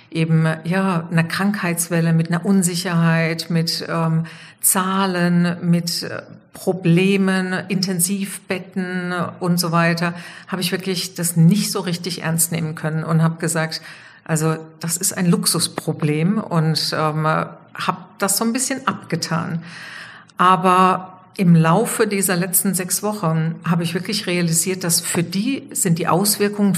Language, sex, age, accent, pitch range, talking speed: German, female, 50-69, German, 165-190 Hz, 130 wpm